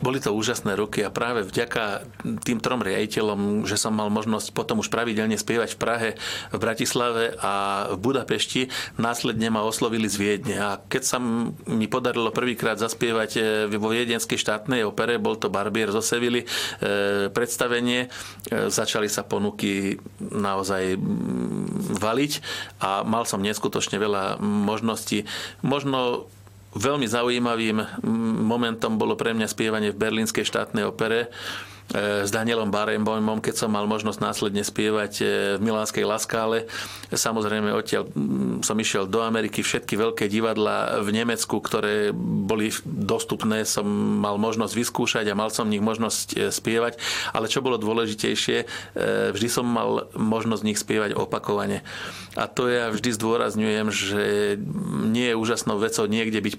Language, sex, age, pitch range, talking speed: Slovak, male, 40-59, 105-115 Hz, 140 wpm